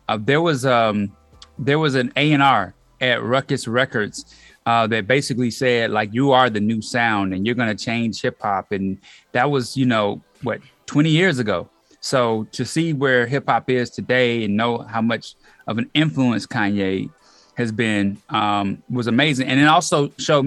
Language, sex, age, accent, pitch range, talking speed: English, male, 30-49, American, 115-135 Hz, 180 wpm